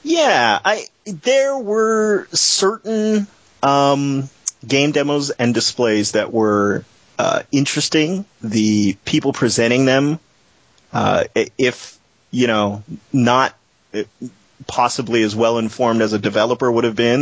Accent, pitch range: American, 110-140 Hz